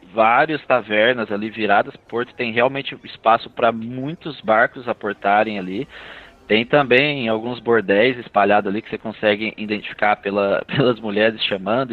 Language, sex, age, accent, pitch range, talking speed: Portuguese, male, 20-39, Brazilian, 105-145 Hz, 135 wpm